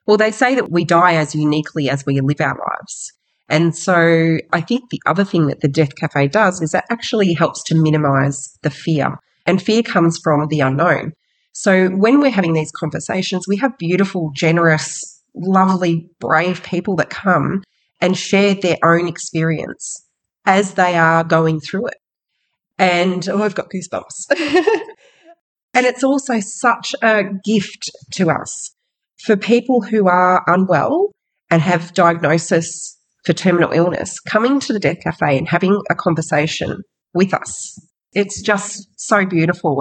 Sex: female